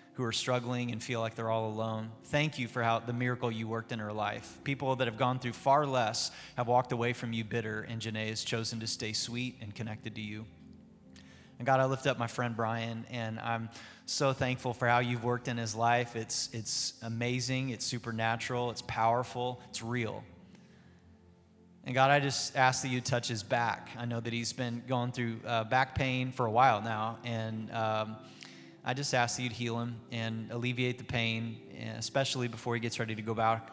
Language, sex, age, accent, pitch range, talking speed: English, male, 30-49, American, 110-125 Hz, 210 wpm